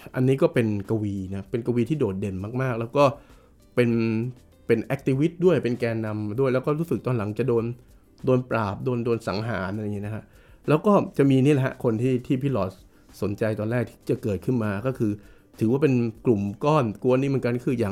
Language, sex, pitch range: Thai, male, 105-135 Hz